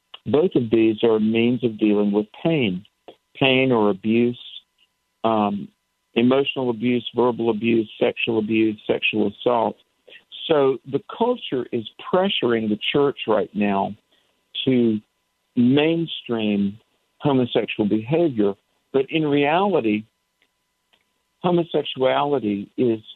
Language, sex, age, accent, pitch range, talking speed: English, male, 50-69, American, 110-135 Hz, 100 wpm